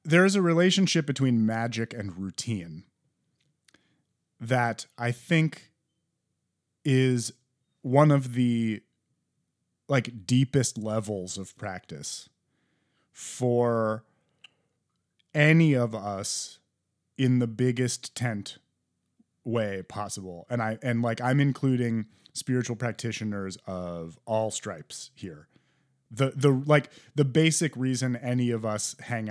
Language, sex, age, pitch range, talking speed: English, male, 30-49, 105-135 Hz, 105 wpm